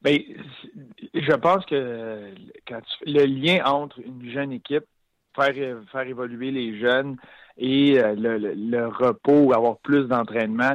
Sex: male